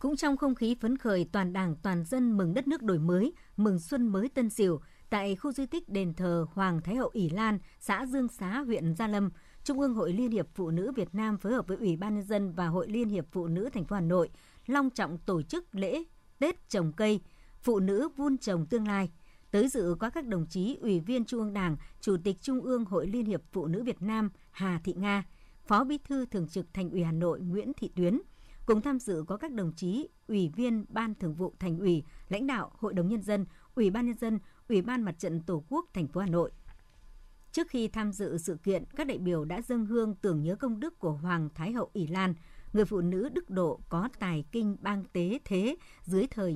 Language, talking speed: Vietnamese, 235 wpm